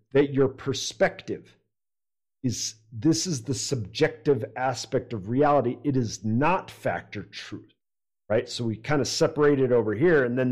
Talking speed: 155 wpm